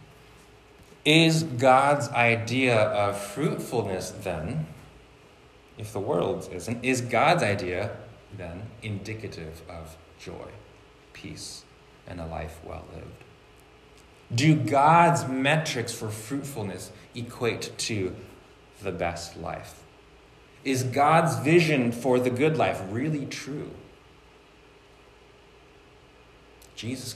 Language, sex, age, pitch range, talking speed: English, male, 30-49, 100-140 Hz, 95 wpm